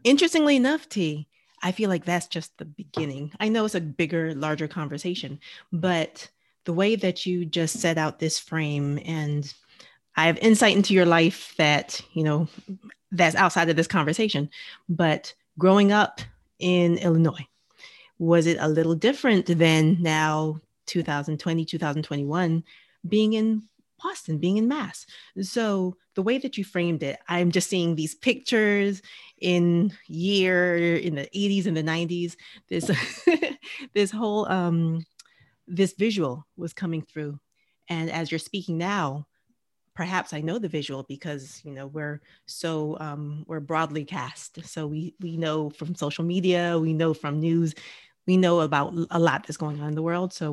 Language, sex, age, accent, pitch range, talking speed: English, female, 30-49, American, 155-190 Hz, 160 wpm